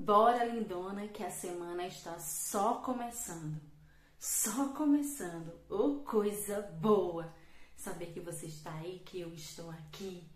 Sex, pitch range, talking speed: female, 170-225 Hz, 125 wpm